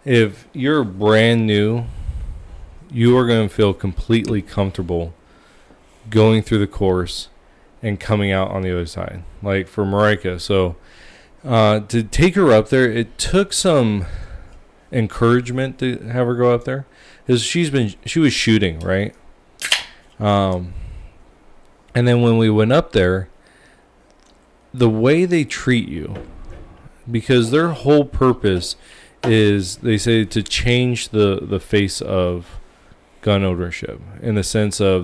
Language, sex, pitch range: English, male, 95-115 Hz